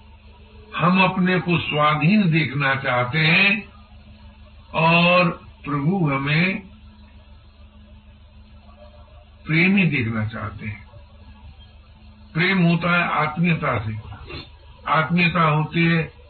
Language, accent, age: Hindi, native, 60-79